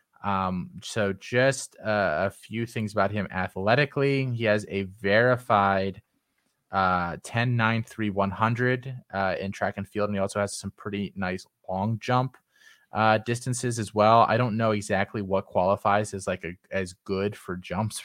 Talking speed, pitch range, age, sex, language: 165 wpm, 95-115 Hz, 20-39, male, English